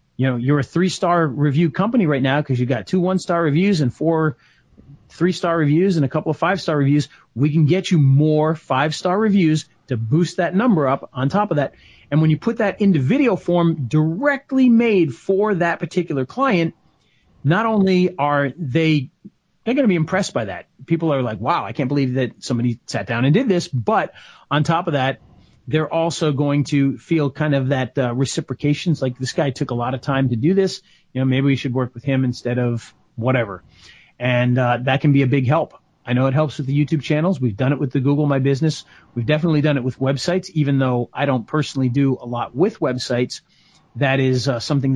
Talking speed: 215 wpm